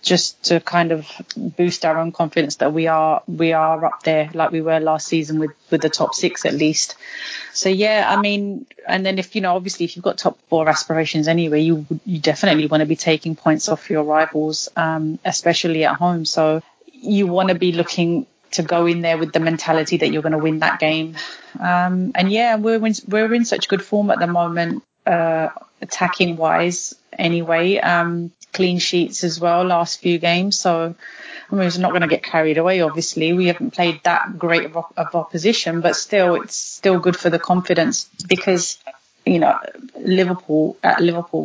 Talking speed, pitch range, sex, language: 195 wpm, 160-180 Hz, female, English